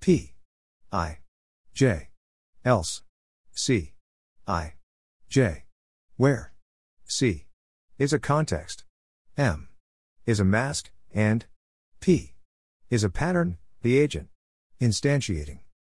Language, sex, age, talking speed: English, male, 50-69, 90 wpm